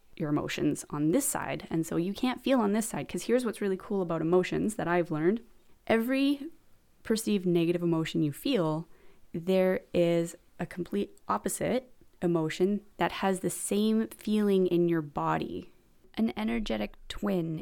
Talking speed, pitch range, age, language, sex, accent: 155 wpm, 170-205 Hz, 20-39, English, female, American